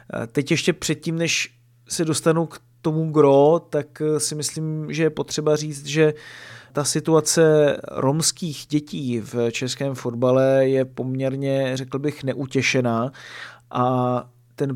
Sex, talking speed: male, 125 wpm